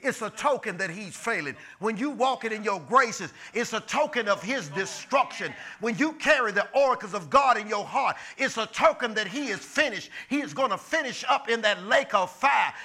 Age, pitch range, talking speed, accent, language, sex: 50-69, 190-275 Hz, 215 wpm, American, English, male